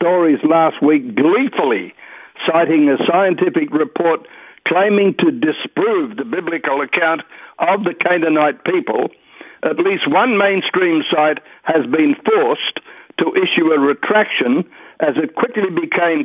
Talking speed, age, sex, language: 125 wpm, 60-79, male, English